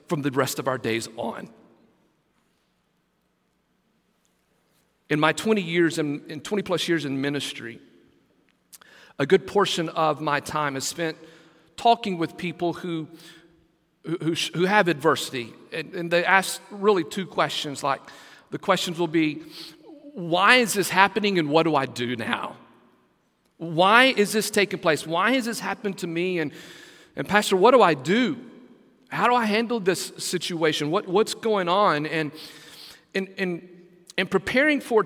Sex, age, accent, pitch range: male, 40-59, American, 160-205 Hz